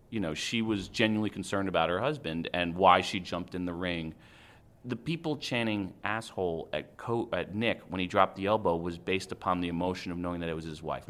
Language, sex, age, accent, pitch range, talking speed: English, male, 30-49, American, 85-110 Hz, 220 wpm